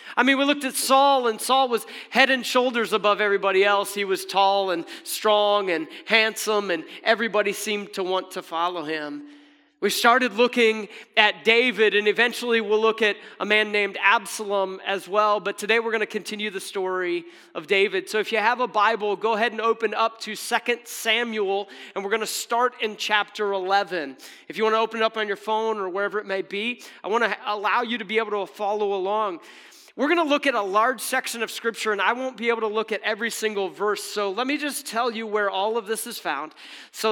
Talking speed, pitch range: 220 wpm, 195-235 Hz